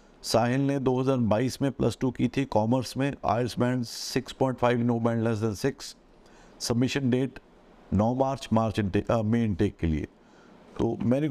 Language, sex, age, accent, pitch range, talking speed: Hindi, male, 50-69, native, 115-135 Hz, 155 wpm